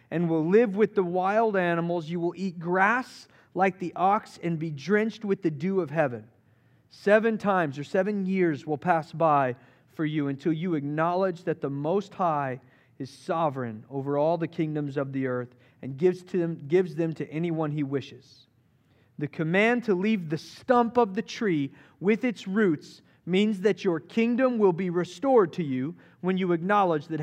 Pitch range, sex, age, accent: 140-185 Hz, male, 40-59, American